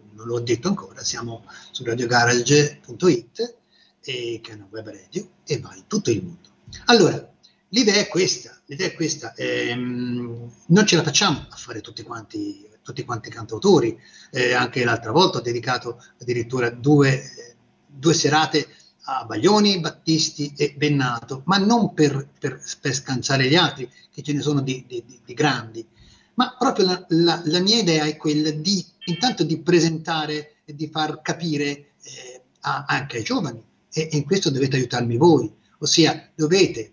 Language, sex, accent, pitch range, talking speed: Italian, male, native, 120-175 Hz, 160 wpm